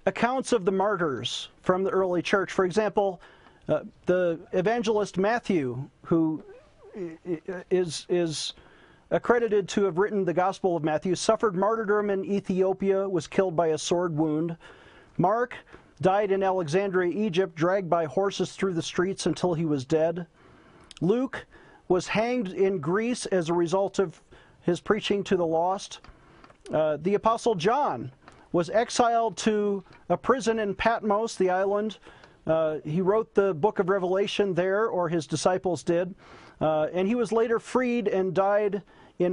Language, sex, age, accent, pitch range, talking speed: English, male, 40-59, American, 170-210 Hz, 150 wpm